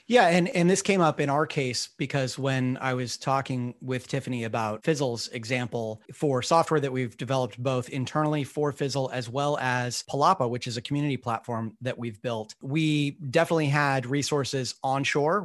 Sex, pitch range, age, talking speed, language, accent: male, 125-150 Hz, 30-49, 175 wpm, English, American